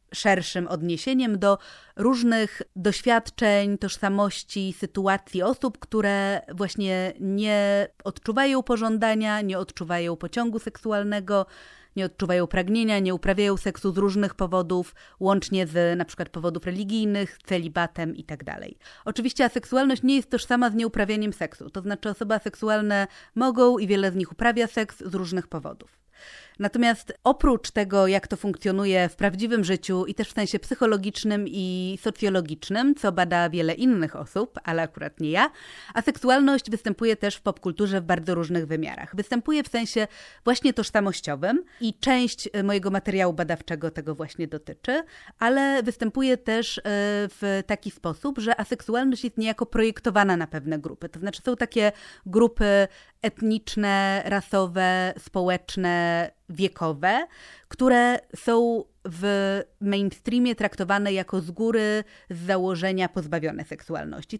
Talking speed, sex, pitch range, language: 130 wpm, female, 185-230 Hz, Polish